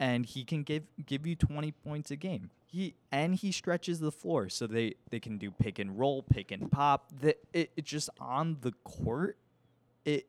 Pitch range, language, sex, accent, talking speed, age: 110-145 Hz, English, male, American, 205 wpm, 20-39